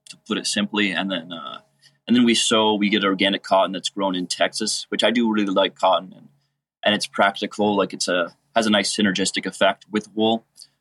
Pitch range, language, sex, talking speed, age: 95-105 Hz, English, male, 215 wpm, 30-49